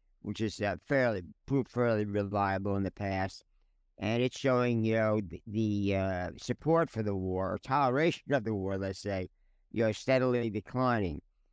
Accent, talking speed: American, 170 wpm